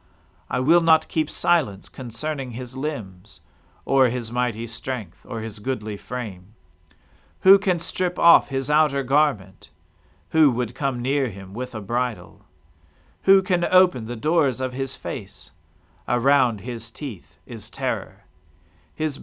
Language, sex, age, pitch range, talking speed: English, male, 40-59, 90-140 Hz, 140 wpm